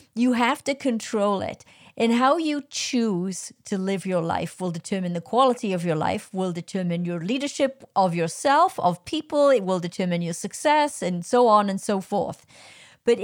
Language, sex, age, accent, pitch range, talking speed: English, female, 50-69, American, 180-235 Hz, 180 wpm